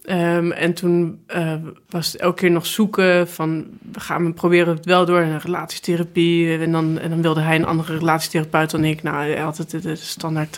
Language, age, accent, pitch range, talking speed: Dutch, 20-39, Dutch, 165-185 Hz, 200 wpm